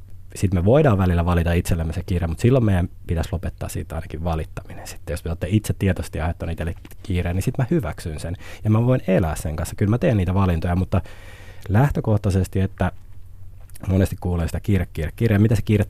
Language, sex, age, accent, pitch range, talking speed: Finnish, male, 20-39, native, 85-100 Hz, 200 wpm